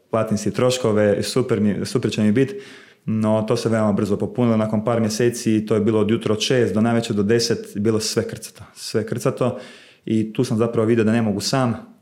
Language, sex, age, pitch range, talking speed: Croatian, male, 30-49, 105-120 Hz, 200 wpm